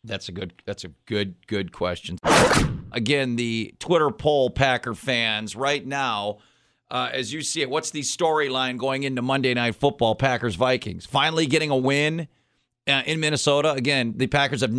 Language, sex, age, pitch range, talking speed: English, male, 40-59, 115-145 Hz, 165 wpm